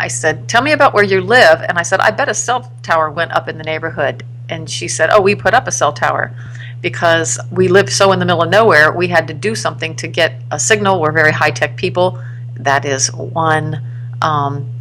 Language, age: English, 40-59